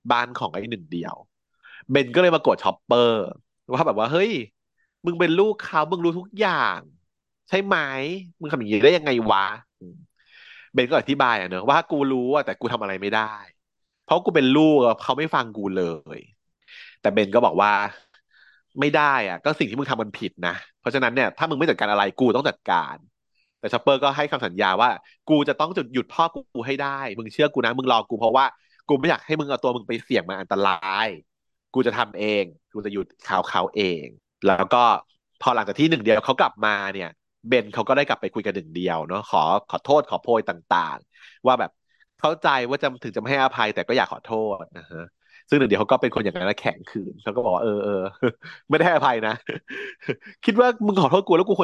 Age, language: 30-49, Thai